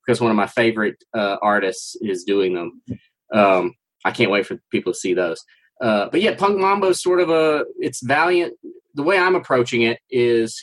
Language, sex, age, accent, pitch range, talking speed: English, male, 30-49, American, 110-130 Hz, 205 wpm